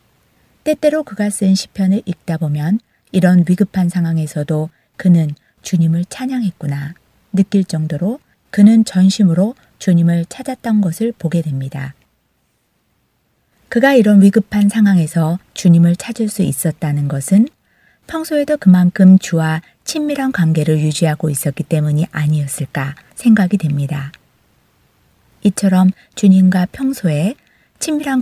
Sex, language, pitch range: female, Korean, 155-210 Hz